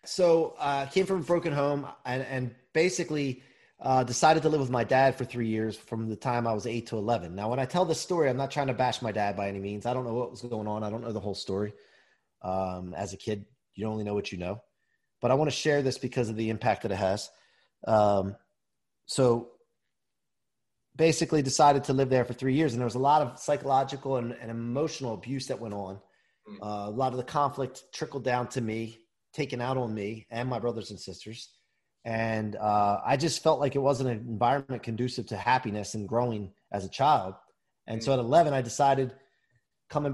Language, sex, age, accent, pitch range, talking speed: English, male, 30-49, American, 110-135 Hz, 220 wpm